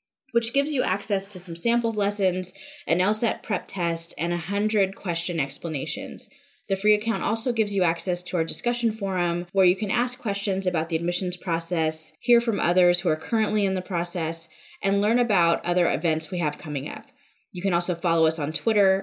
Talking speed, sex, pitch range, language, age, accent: 195 wpm, female, 165-210 Hz, English, 10-29, American